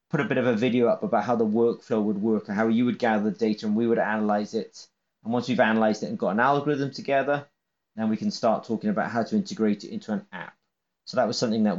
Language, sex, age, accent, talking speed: English, male, 30-49, British, 270 wpm